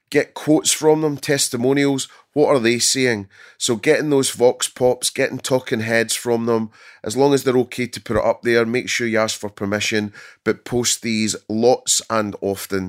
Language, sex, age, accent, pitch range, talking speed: English, male, 30-49, British, 100-130 Hz, 190 wpm